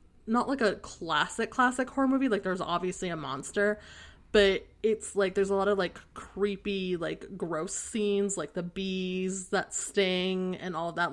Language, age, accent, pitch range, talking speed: English, 20-39, American, 175-205 Hz, 175 wpm